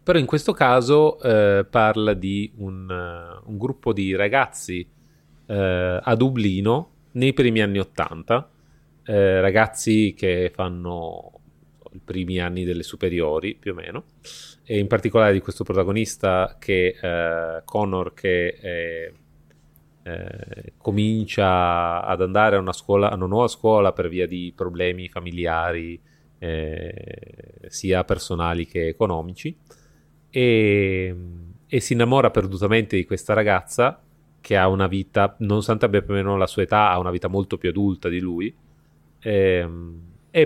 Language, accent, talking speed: Italian, native, 140 wpm